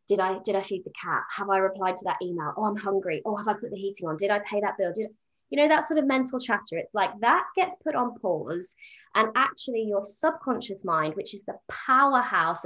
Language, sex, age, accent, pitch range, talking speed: English, female, 20-39, British, 195-260 Hz, 245 wpm